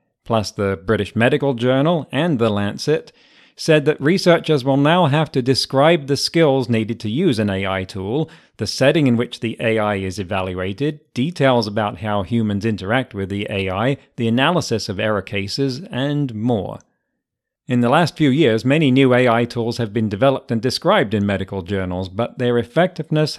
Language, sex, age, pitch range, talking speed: English, male, 40-59, 110-140 Hz, 170 wpm